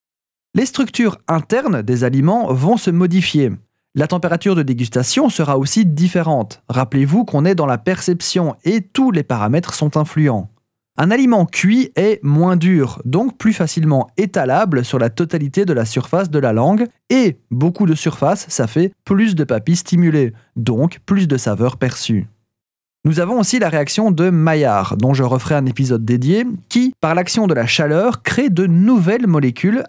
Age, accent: 30-49, French